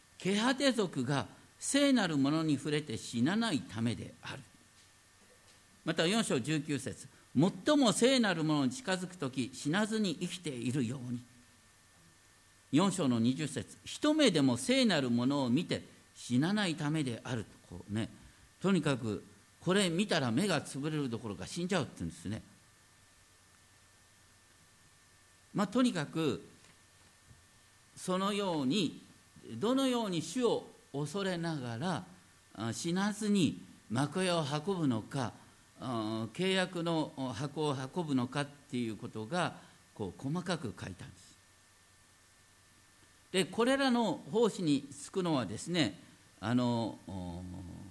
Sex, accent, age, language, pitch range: male, native, 50-69, Japanese, 105-175 Hz